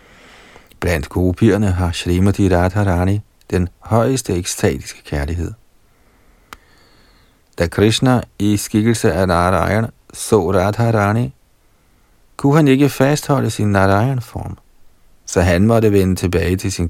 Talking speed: 105 wpm